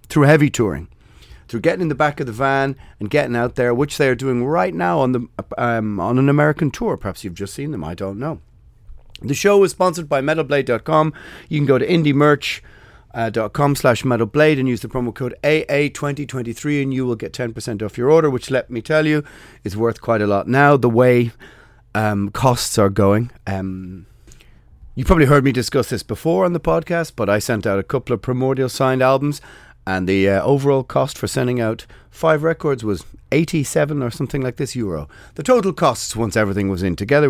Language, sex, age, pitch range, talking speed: English, male, 30-49, 105-145 Hz, 205 wpm